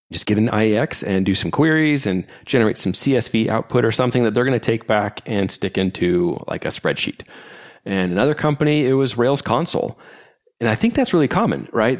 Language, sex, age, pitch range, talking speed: English, male, 30-49, 100-125 Hz, 200 wpm